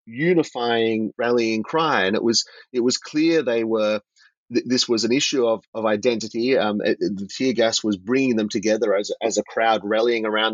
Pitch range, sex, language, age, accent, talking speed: 105-130 Hz, male, English, 30-49, Australian, 200 wpm